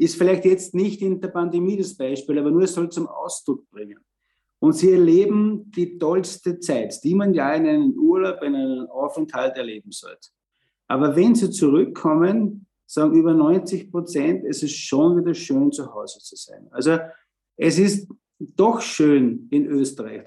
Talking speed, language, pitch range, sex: 170 wpm, German, 155-220 Hz, male